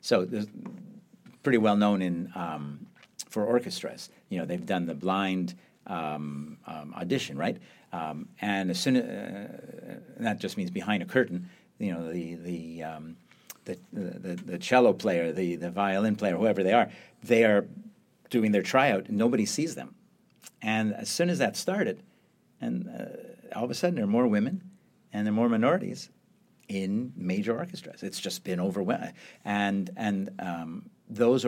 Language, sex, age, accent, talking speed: English, male, 50-69, American, 170 wpm